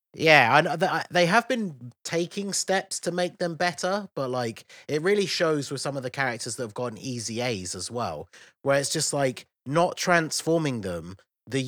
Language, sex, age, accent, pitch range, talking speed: English, male, 30-49, British, 100-135 Hz, 185 wpm